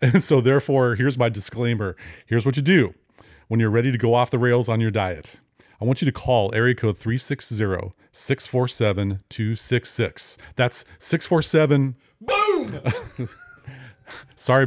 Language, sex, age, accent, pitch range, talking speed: English, male, 40-59, American, 105-125 Hz, 130 wpm